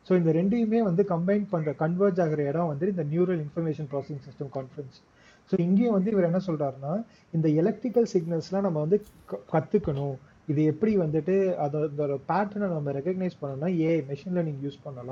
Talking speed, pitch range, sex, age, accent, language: 140 wpm, 145-185 Hz, male, 30-49, native, Tamil